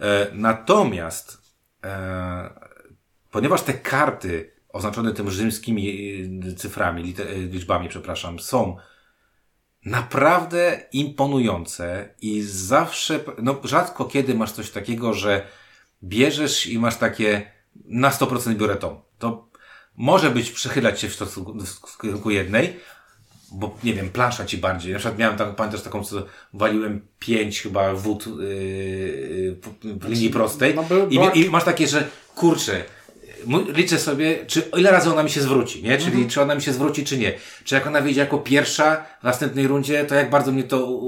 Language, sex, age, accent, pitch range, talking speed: Polish, male, 40-59, native, 105-140 Hz, 140 wpm